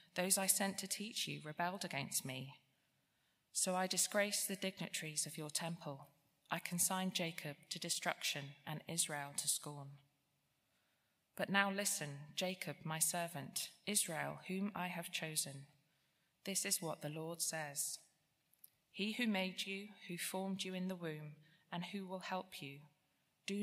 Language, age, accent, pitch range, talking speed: English, 20-39, British, 150-185 Hz, 150 wpm